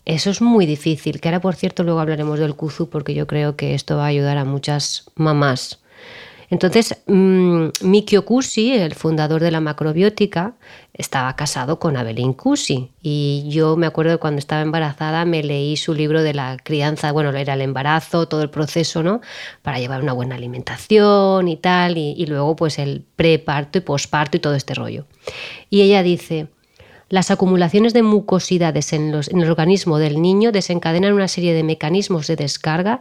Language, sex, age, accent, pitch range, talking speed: Spanish, female, 20-39, Spanish, 155-195 Hz, 180 wpm